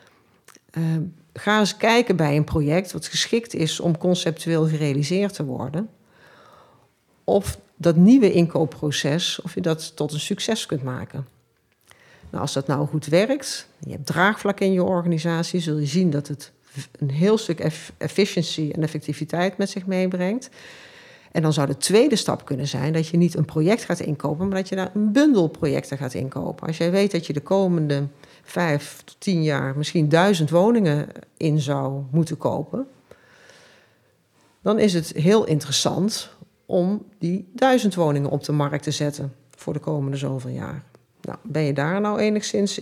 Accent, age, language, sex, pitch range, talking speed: Dutch, 40-59, Dutch, female, 150-195 Hz, 165 wpm